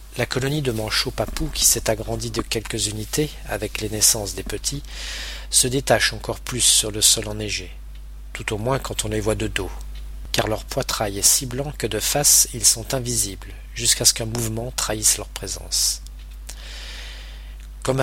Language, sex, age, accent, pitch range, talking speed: French, male, 40-59, French, 95-120 Hz, 175 wpm